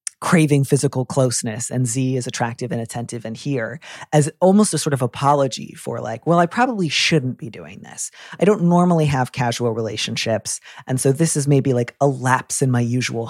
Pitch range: 125-160 Hz